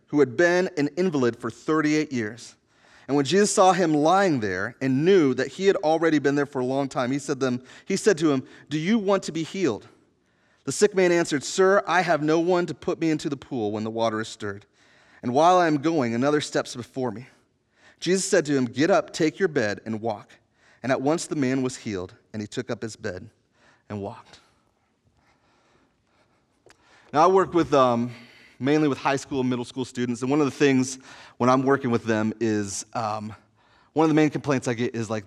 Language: English